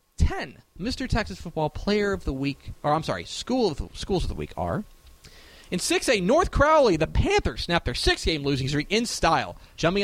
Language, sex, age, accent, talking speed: English, male, 30-49, American, 195 wpm